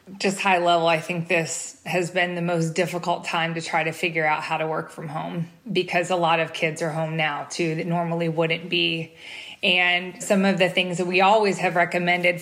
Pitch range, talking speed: 165-190 Hz, 220 wpm